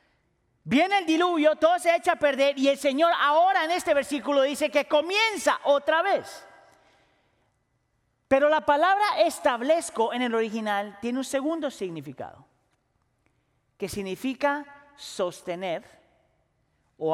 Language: Spanish